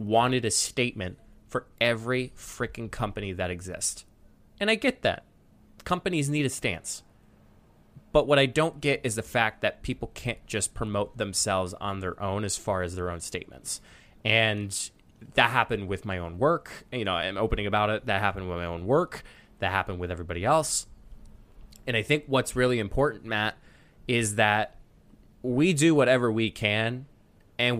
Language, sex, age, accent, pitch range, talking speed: English, male, 20-39, American, 95-125 Hz, 170 wpm